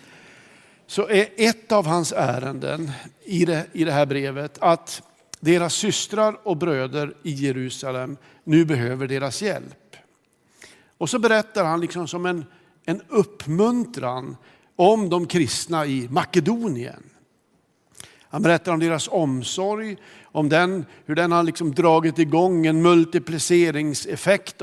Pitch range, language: 150-190 Hz, Swedish